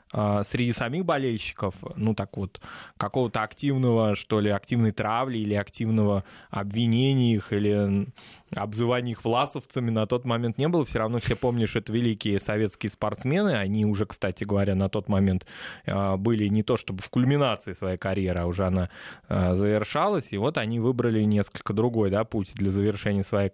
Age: 20-39